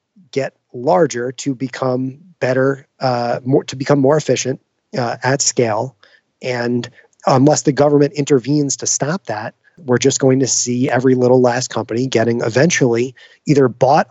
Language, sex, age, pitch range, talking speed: English, male, 30-49, 125-160 Hz, 150 wpm